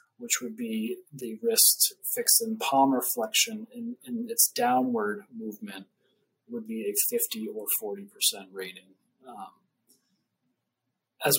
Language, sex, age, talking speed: English, male, 30-49, 125 wpm